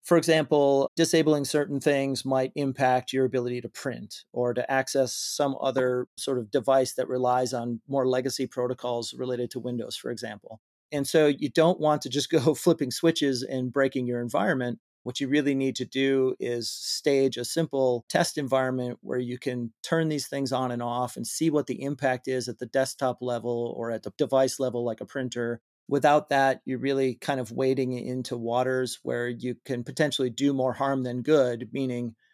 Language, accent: English, American